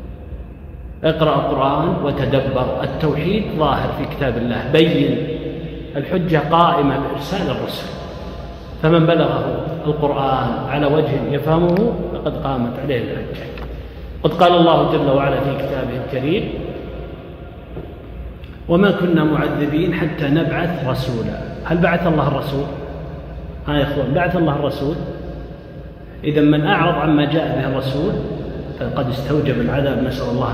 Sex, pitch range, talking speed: male, 135-165 Hz, 115 wpm